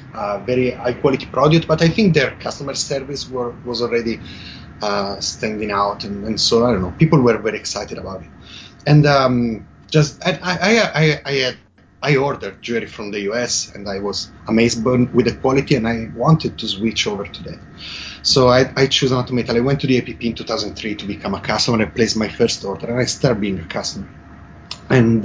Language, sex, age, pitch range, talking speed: English, male, 30-49, 100-140 Hz, 205 wpm